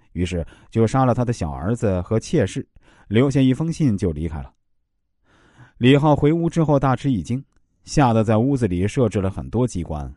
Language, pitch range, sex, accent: Chinese, 100-140 Hz, male, native